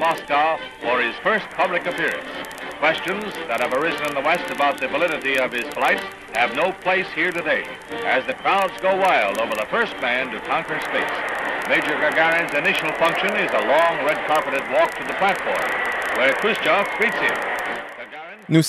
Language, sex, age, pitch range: French, male, 60-79, 115-160 Hz